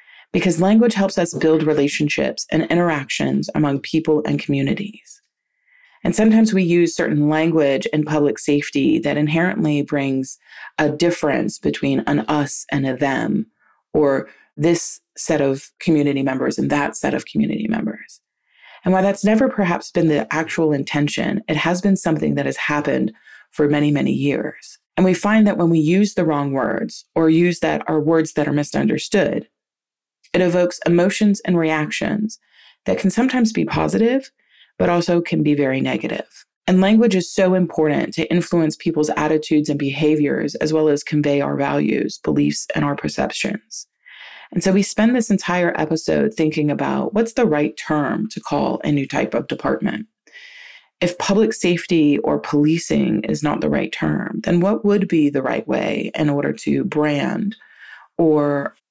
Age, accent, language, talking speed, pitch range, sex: 30-49, American, English, 165 wpm, 150-195 Hz, female